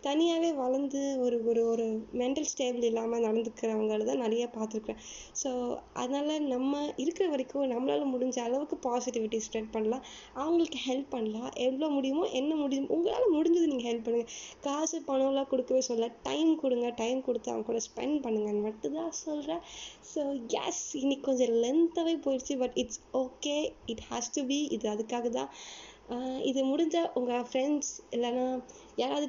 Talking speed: 140 wpm